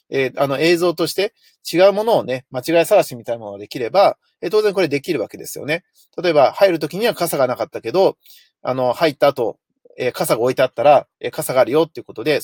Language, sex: Japanese, male